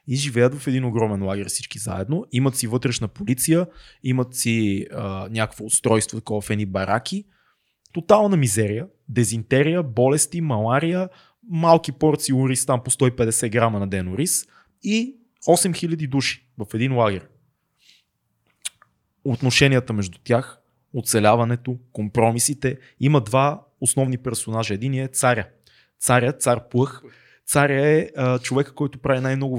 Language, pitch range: Bulgarian, 115-140 Hz